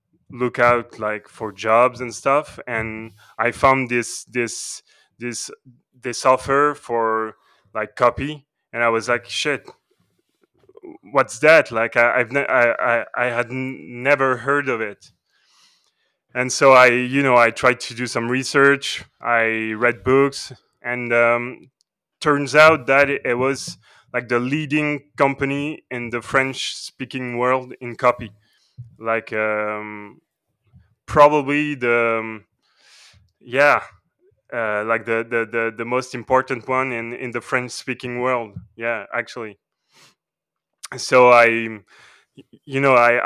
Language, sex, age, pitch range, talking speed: English, male, 20-39, 115-135 Hz, 135 wpm